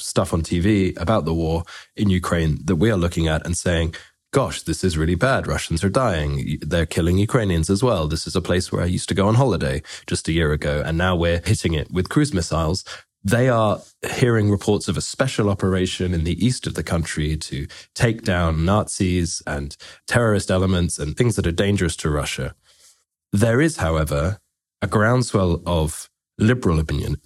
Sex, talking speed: male, 190 wpm